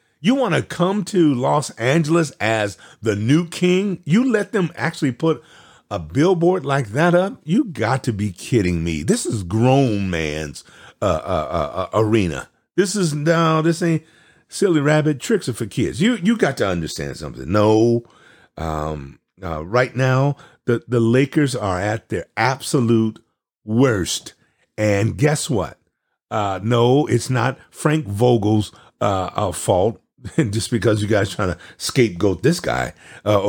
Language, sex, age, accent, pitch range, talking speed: English, male, 50-69, American, 105-155 Hz, 160 wpm